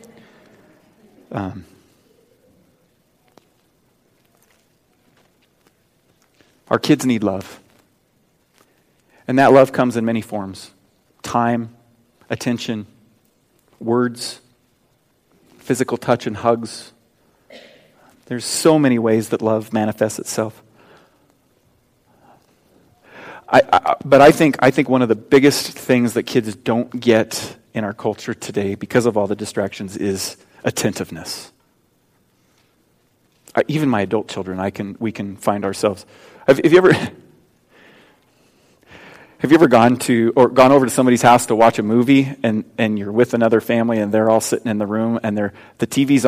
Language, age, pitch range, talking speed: English, 30-49, 105-125 Hz, 130 wpm